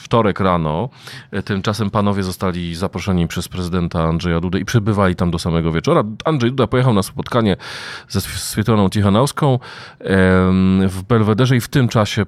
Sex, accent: male, native